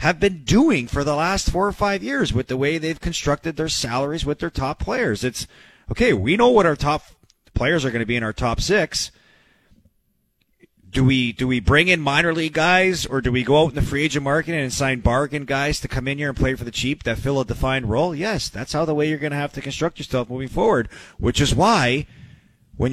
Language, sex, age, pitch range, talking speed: English, male, 30-49, 120-180 Hz, 240 wpm